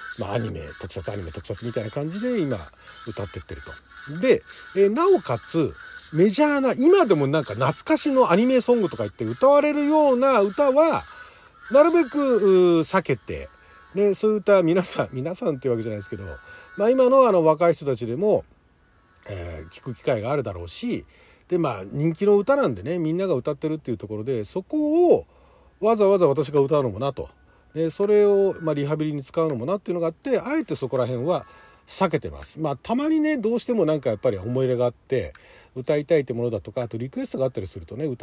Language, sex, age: Japanese, male, 40-59